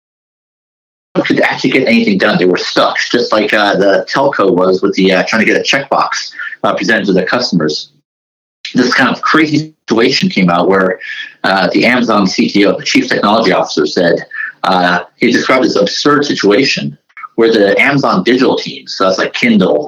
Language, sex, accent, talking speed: English, male, American, 175 wpm